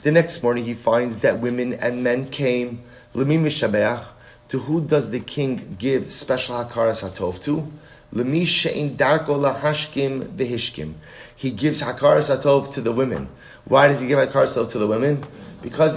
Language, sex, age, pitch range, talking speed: English, male, 30-49, 115-145 Hz, 140 wpm